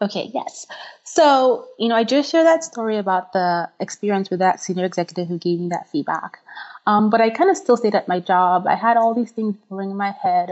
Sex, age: female, 20-39